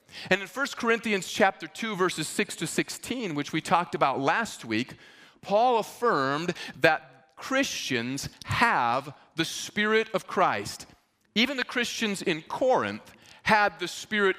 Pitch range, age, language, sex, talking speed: 155-205 Hz, 40-59, English, male, 140 wpm